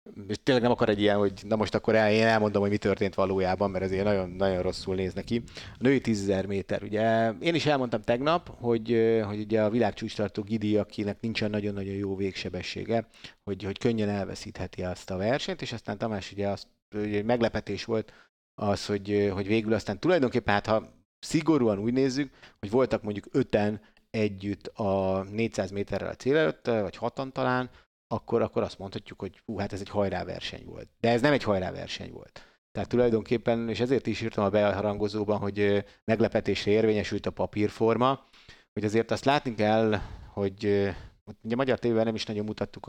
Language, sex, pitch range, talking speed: Hungarian, male, 100-120 Hz, 180 wpm